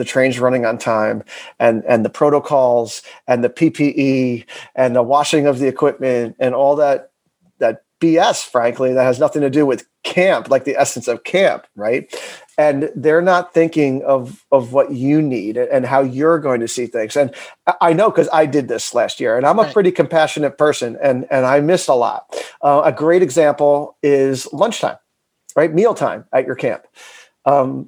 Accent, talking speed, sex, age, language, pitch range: American, 185 wpm, male, 40-59, English, 140-170 Hz